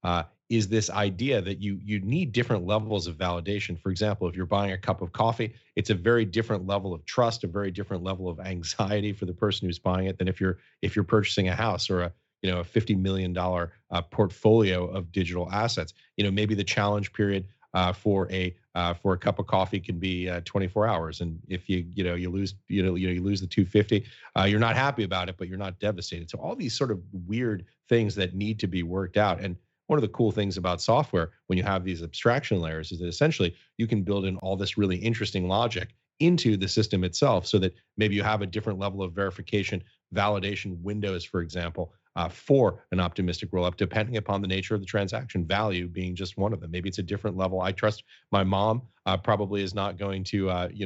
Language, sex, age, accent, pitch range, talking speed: English, male, 30-49, American, 90-105 Hz, 235 wpm